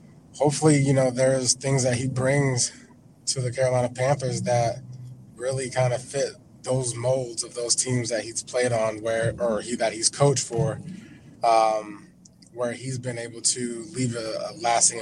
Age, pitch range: 20-39, 115-135 Hz